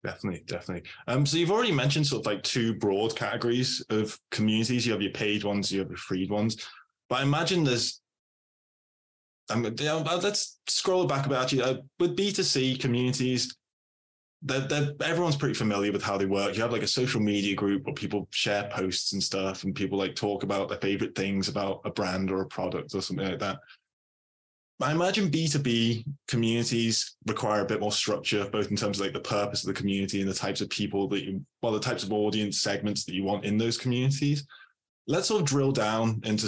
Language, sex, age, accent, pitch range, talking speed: English, male, 10-29, British, 100-125 Hz, 205 wpm